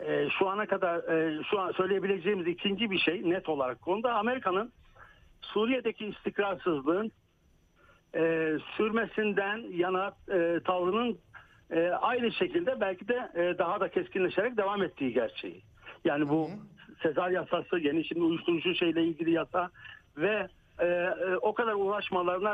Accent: native